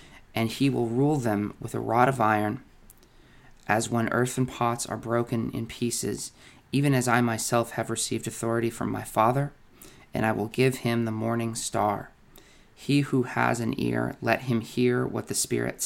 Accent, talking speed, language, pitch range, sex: American, 180 wpm, English, 115-135 Hz, male